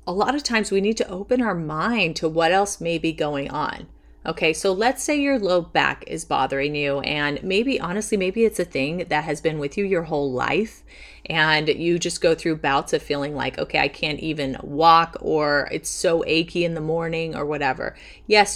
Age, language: 30-49, English